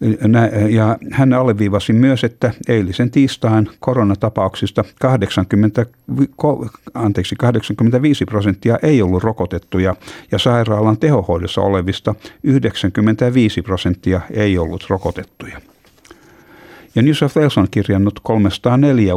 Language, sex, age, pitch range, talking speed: Finnish, male, 50-69, 95-115 Hz, 85 wpm